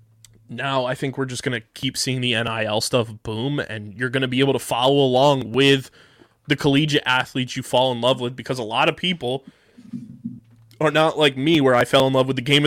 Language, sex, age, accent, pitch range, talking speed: English, male, 20-39, American, 120-145 Hz, 225 wpm